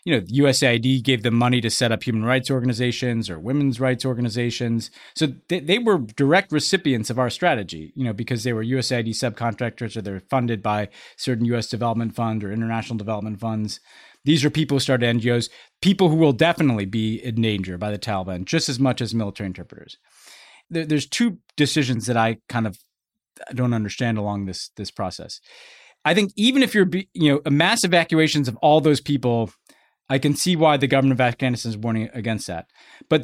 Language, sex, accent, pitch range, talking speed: English, male, American, 115-155 Hz, 195 wpm